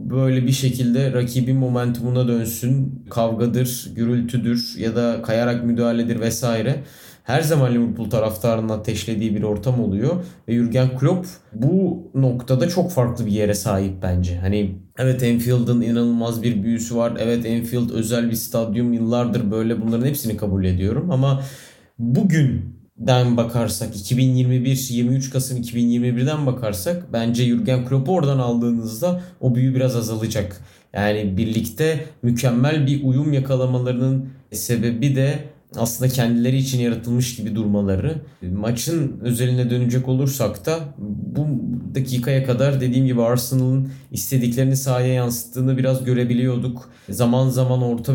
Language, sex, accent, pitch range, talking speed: Turkish, male, native, 115-130 Hz, 125 wpm